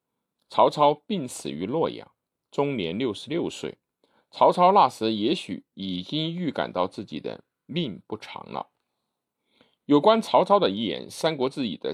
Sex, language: male, Chinese